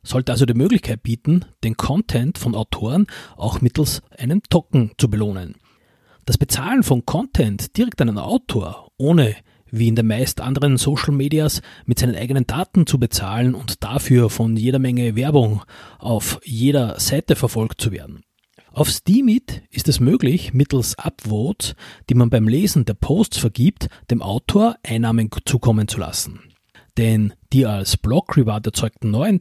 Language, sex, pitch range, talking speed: German, male, 110-155 Hz, 155 wpm